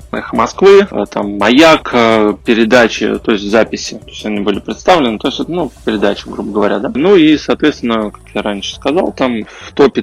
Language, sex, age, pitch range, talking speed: Russian, male, 20-39, 105-120 Hz, 175 wpm